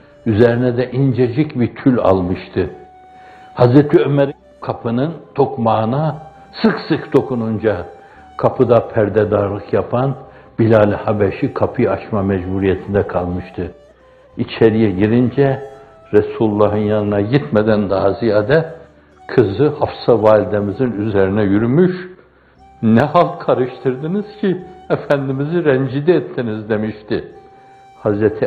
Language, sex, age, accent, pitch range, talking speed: Turkish, male, 60-79, native, 105-135 Hz, 90 wpm